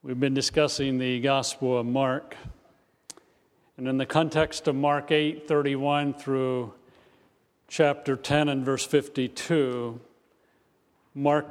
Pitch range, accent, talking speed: 135-155 Hz, American, 115 wpm